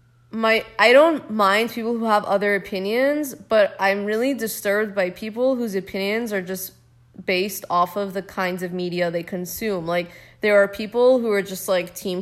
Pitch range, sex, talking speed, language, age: 180-220 Hz, female, 180 wpm, English, 20-39